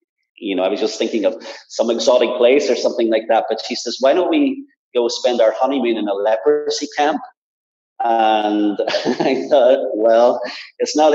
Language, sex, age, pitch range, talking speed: English, male, 30-49, 115-170 Hz, 185 wpm